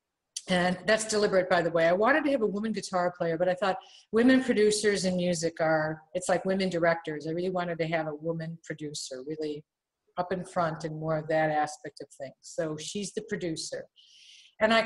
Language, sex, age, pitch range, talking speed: English, female, 50-69, 175-215 Hz, 205 wpm